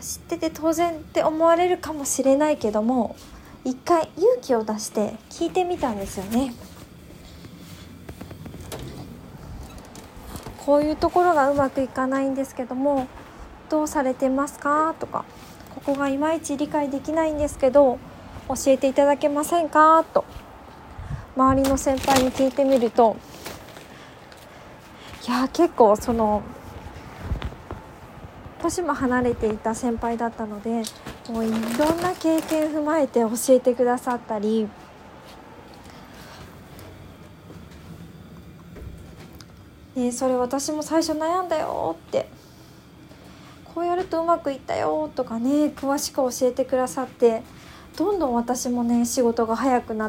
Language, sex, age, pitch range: Japanese, female, 20-39, 235-300 Hz